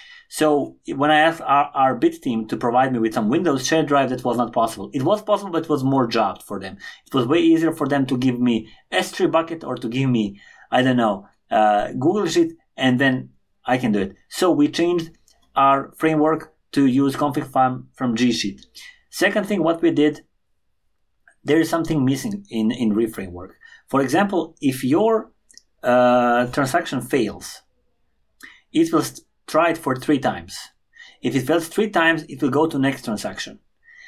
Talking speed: 185 wpm